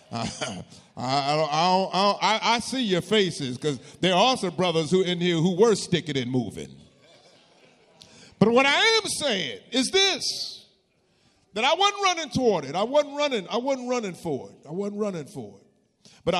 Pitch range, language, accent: 165-235 Hz, English, American